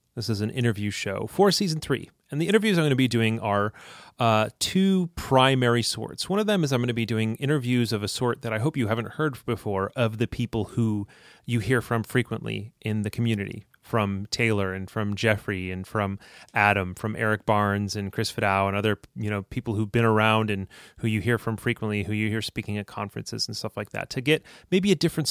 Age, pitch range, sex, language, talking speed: 30-49, 105-125 Hz, male, English, 225 wpm